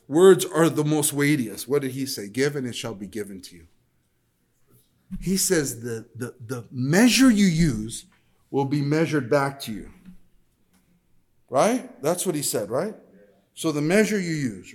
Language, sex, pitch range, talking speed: English, male, 115-170 Hz, 170 wpm